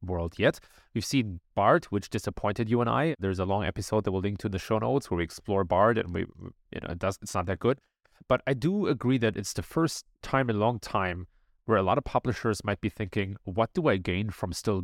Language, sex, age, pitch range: English, male, 30-49, 95-125 Hz